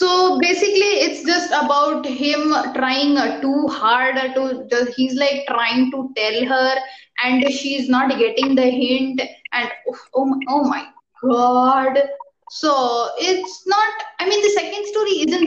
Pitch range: 260-355 Hz